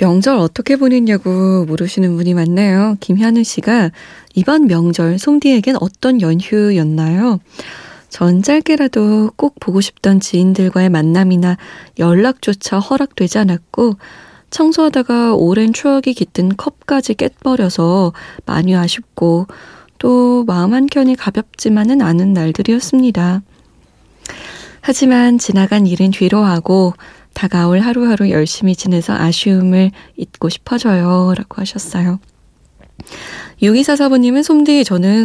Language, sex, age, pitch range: Korean, female, 20-39, 180-245 Hz